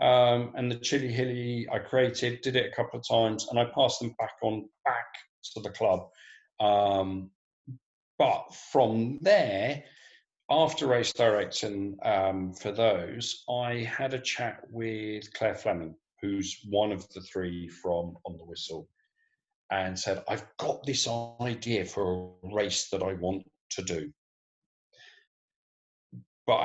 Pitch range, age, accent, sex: 95-130 Hz, 40-59, British, male